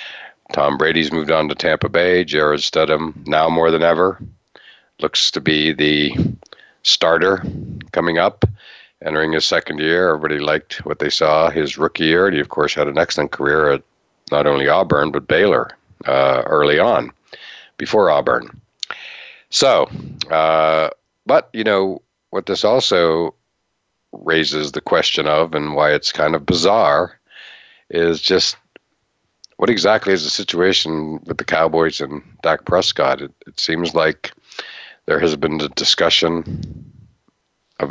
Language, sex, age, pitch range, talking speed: English, male, 60-79, 75-85 Hz, 145 wpm